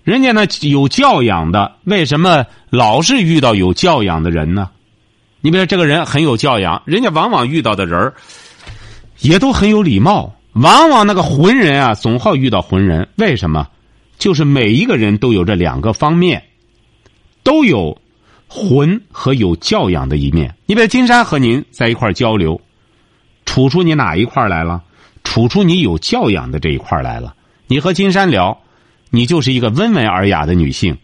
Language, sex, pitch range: Chinese, male, 110-175 Hz